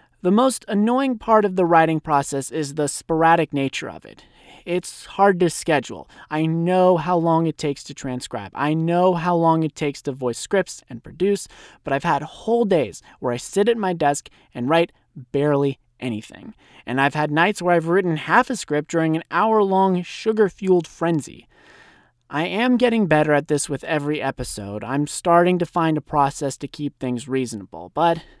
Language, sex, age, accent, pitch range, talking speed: English, male, 30-49, American, 145-190 Hz, 185 wpm